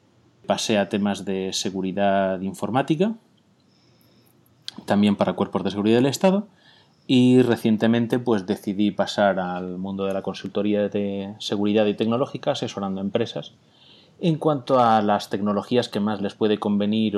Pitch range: 100-125 Hz